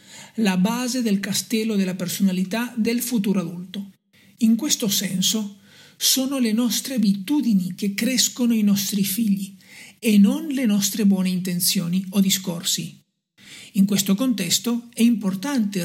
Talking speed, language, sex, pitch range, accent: 130 wpm, Italian, male, 185-230 Hz, native